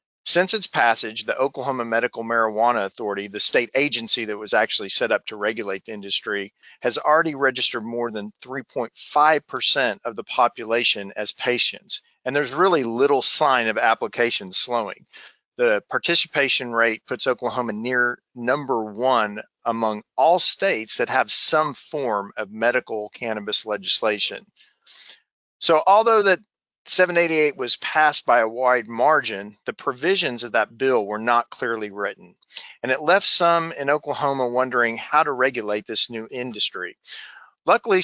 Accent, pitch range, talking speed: American, 110-145 Hz, 145 wpm